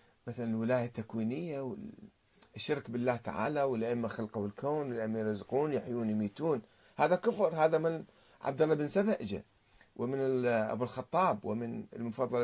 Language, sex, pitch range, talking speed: Arabic, male, 115-160 Hz, 125 wpm